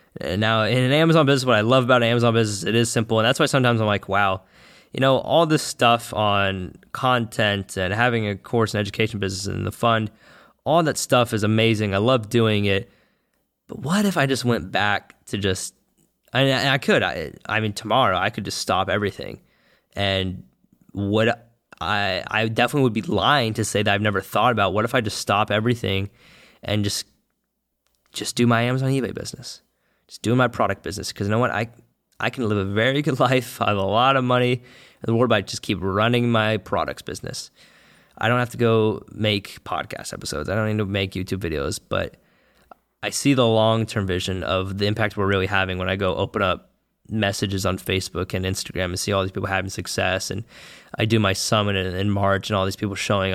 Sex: male